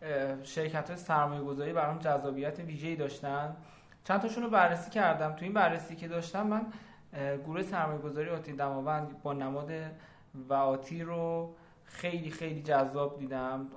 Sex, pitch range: male, 140-170 Hz